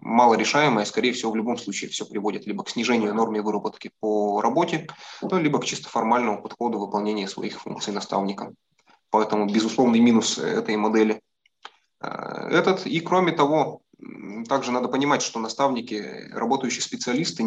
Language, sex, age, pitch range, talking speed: Russian, male, 20-39, 105-125 Hz, 135 wpm